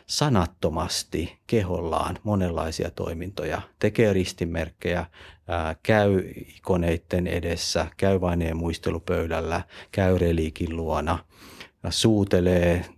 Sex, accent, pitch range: male, native, 85-105 Hz